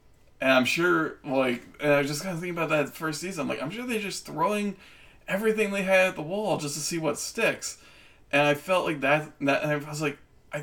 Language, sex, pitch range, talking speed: English, male, 130-160 Hz, 250 wpm